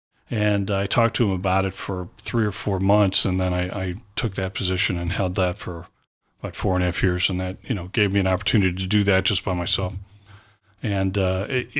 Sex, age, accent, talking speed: male, 40-59, American, 230 wpm